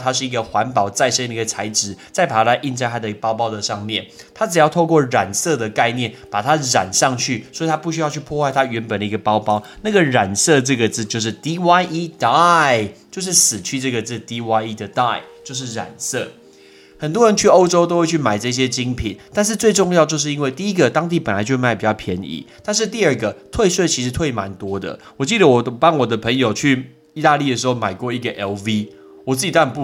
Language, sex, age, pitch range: Chinese, male, 20-39, 110-155 Hz